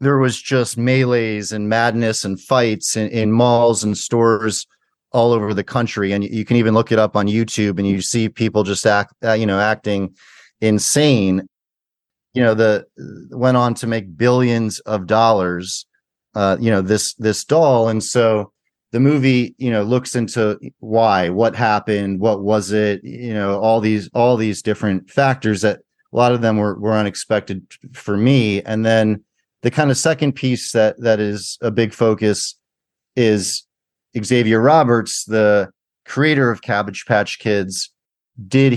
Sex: male